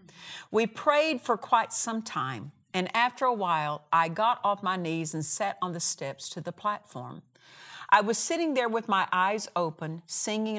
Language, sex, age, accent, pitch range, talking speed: English, female, 50-69, American, 160-215 Hz, 180 wpm